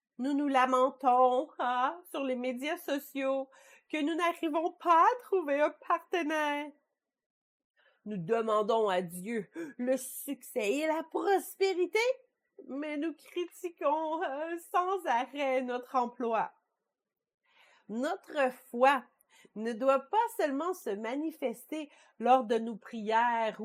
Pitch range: 225-335 Hz